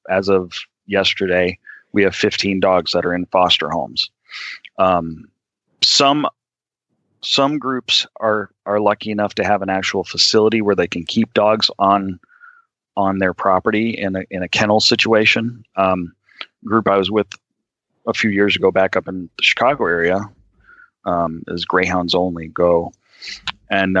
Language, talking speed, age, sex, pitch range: English, 155 wpm, 30-49, male, 90-110 Hz